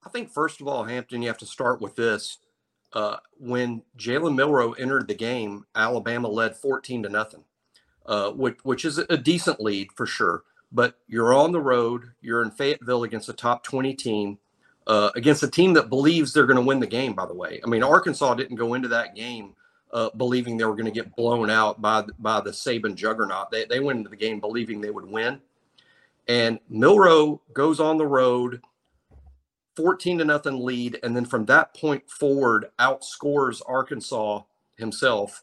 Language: English